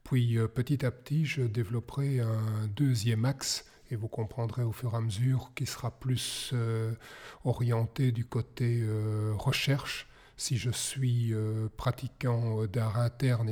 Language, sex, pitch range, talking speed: French, male, 115-130 Hz, 145 wpm